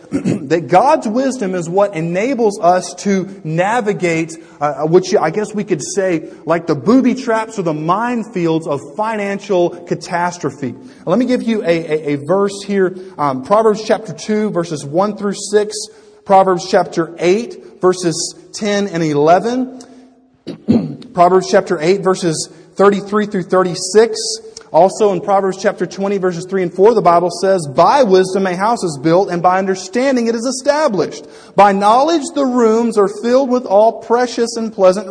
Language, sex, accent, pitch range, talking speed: English, male, American, 175-220 Hz, 155 wpm